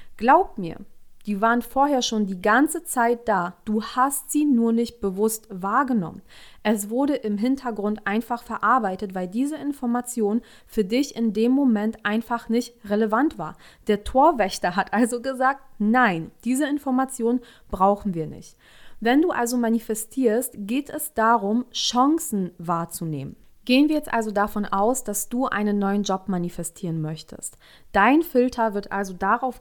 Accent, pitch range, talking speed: German, 200-250 Hz, 150 wpm